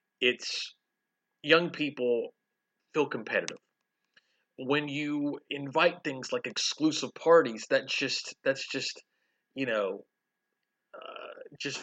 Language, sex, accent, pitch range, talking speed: English, male, American, 120-205 Hz, 100 wpm